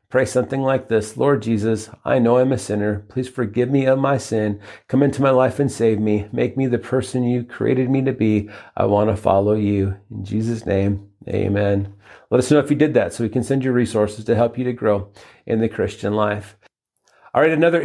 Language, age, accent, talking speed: English, 40-59, American, 225 wpm